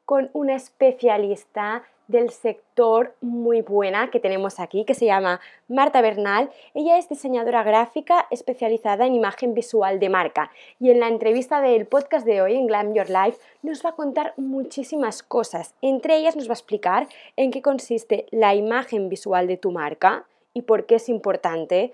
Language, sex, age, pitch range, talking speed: Spanish, female, 20-39, 210-275 Hz, 170 wpm